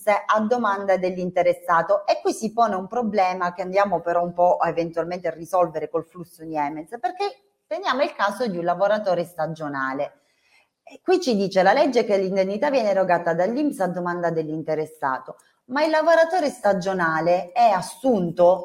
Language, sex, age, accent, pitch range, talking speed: Italian, female, 30-49, native, 170-235 Hz, 155 wpm